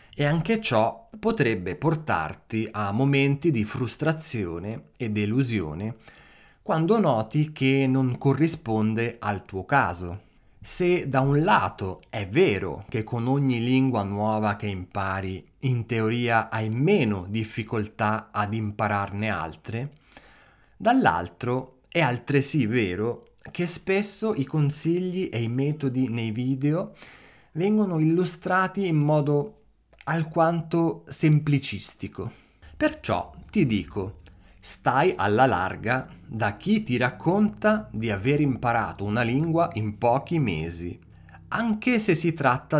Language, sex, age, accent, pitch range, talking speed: Italian, male, 30-49, native, 105-155 Hz, 115 wpm